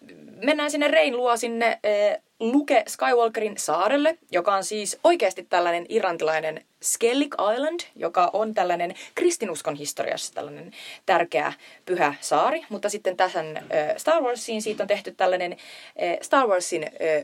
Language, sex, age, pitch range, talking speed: Finnish, female, 30-49, 165-235 Hz, 120 wpm